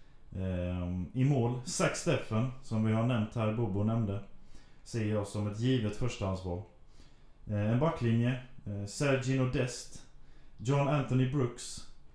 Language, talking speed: Swedish, 120 wpm